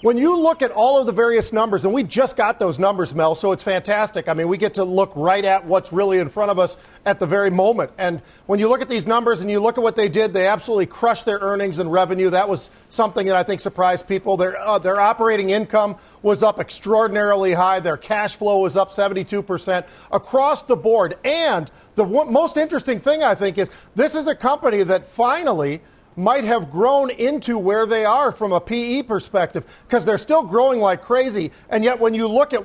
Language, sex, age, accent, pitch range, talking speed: English, male, 40-59, American, 190-235 Hz, 220 wpm